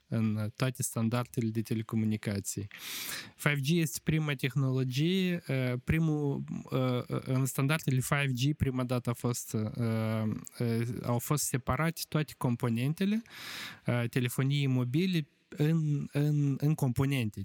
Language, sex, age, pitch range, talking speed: Romanian, male, 20-39, 115-145 Hz, 95 wpm